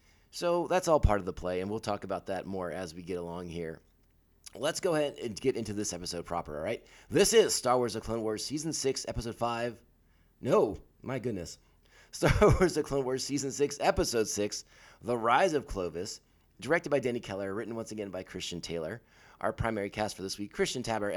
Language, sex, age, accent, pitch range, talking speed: English, male, 30-49, American, 95-145 Hz, 210 wpm